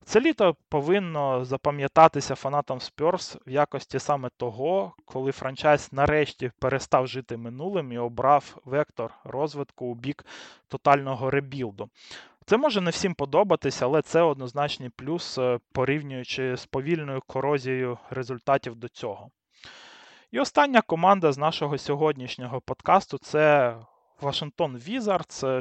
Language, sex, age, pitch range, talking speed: Russian, male, 20-39, 130-155 Hz, 120 wpm